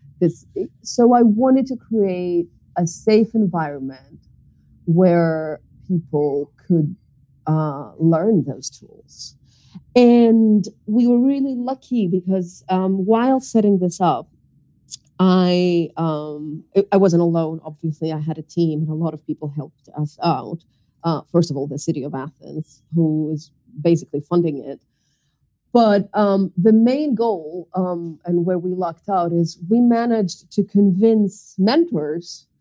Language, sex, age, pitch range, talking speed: English, female, 30-49, 155-215 Hz, 140 wpm